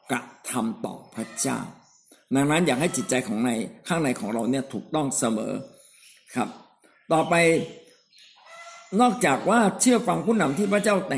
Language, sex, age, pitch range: Thai, male, 60-79, 135-190 Hz